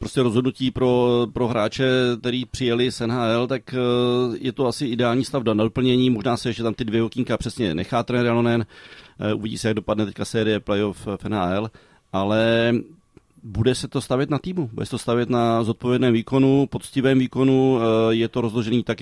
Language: Czech